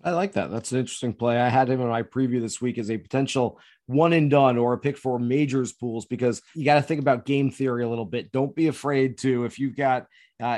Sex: male